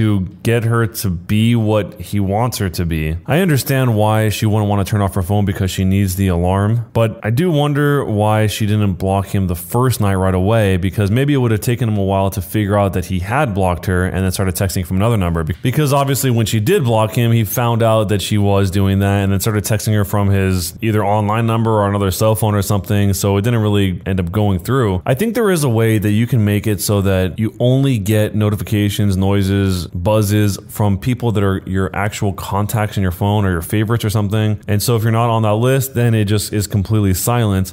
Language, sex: English, male